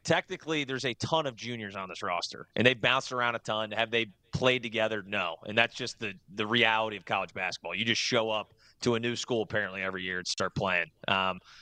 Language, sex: English, male